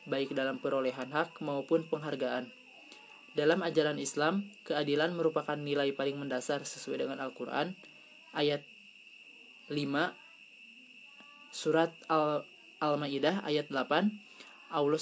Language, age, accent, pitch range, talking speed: Indonesian, 20-39, native, 145-165 Hz, 95 wpm